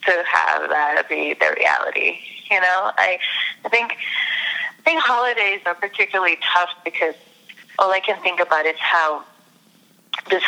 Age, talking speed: 30-49, 145 wpm